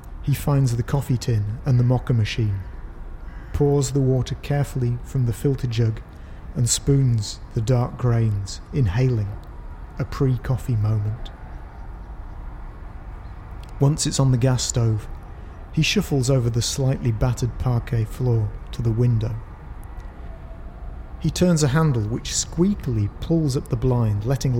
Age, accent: 30-49, British